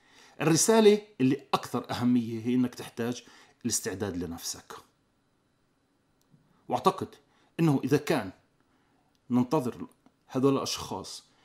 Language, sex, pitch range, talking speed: Arabic, male, 125-165 Hz, 85 wpm